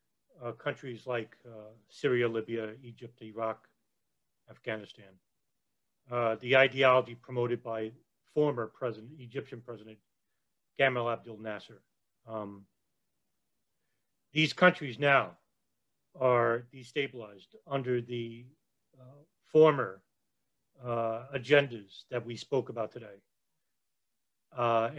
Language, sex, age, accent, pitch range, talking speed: English, male, 40-59, American, 115-145 Hz, 95 wpm